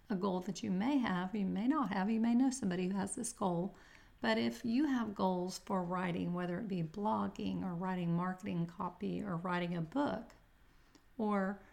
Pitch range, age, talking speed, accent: 185-225 Hz, 40-59, 195 wpm, American